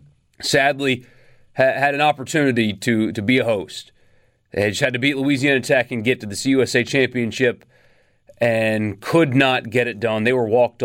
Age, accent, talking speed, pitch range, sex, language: 30-49, American, 175 wpm, 115-165 Hz, male, English